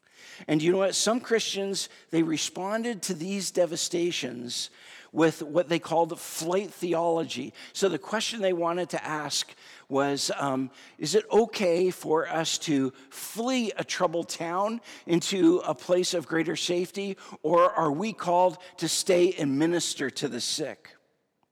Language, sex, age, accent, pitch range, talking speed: English, male, 50-69, American, 155-190 Hz, 150 wpm